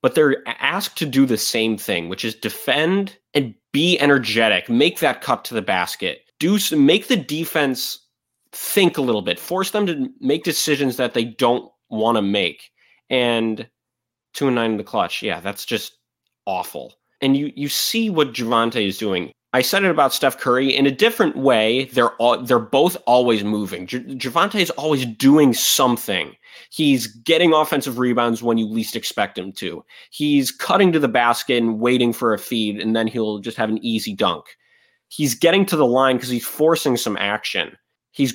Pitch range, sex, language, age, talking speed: 120-190 Hz, male, English, 20-39, 190 wpm